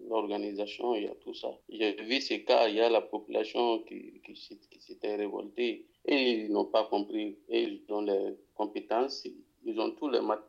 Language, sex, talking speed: French, male, 200 wpm